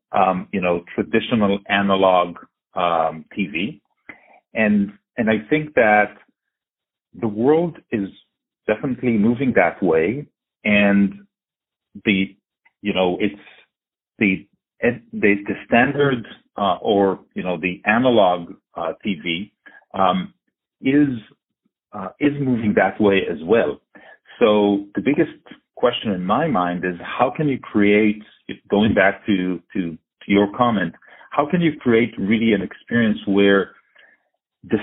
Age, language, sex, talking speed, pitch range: 40-59, English, male, 125 wpm, 100-125 Hz